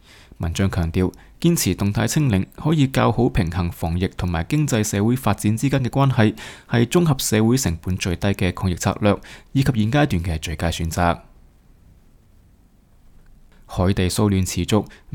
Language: Chinese